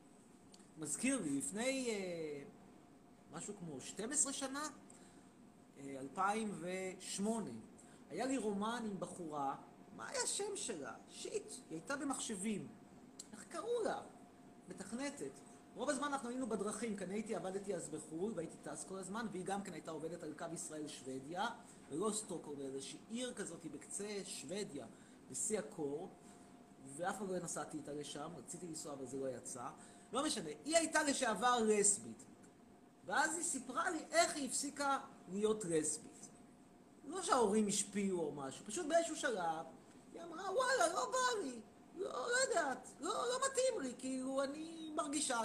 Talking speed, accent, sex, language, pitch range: 145 wpm, native, male, Hebrew, 180-275 Hz